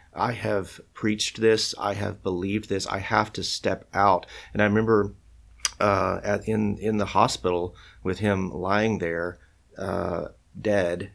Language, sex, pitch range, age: English, male, 85-100 Hz, 30-49